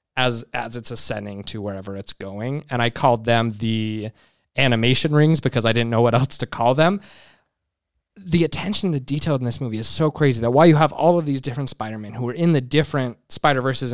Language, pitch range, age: English, 115-150 Hz, 20-39